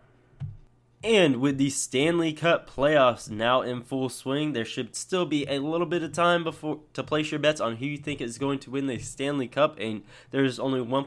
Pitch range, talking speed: 120-145 Hz, 210 wpm